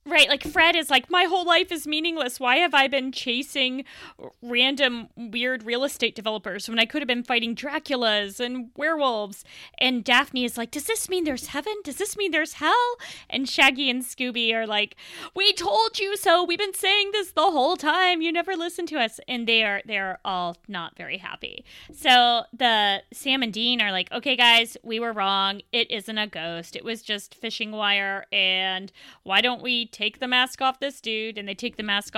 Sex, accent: female, American